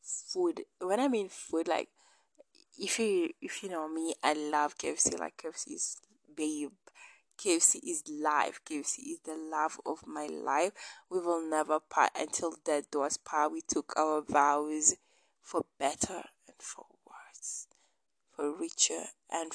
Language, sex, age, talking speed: English, female, 20-39, 150 wpm